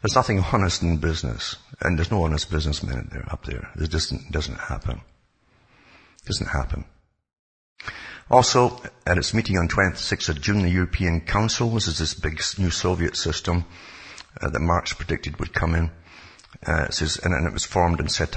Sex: male